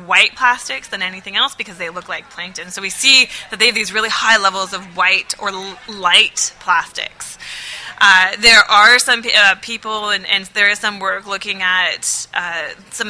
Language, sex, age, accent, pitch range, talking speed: English, female, 20-39, American, 185-220 Hz, 190 wpm